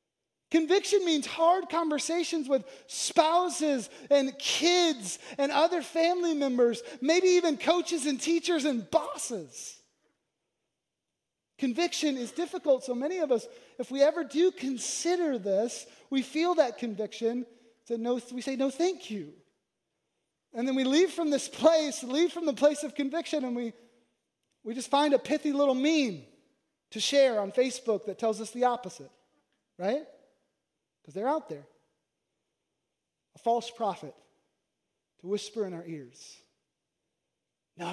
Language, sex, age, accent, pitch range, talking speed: English, male, 30-49, American, 225-320 Hz, 140 wpm